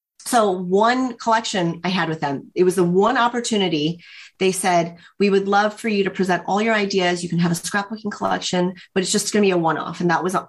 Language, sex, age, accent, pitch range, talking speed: English, female, 30-49, American, 185-230 Hz, 235 wpm